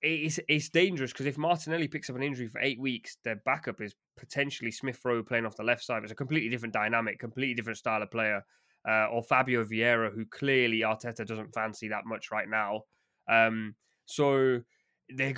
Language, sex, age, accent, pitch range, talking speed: English, male, 20-39, British, 110-135 Hz, 190 wpm